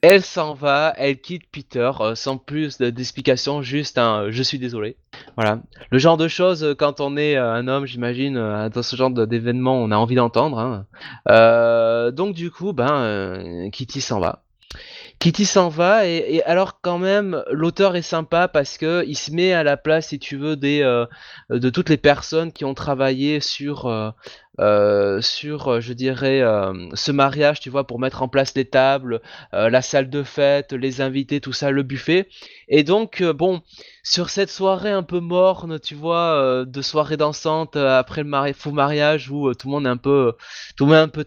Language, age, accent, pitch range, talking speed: French, 20-39, French, 130-160 Hz, 210 wpm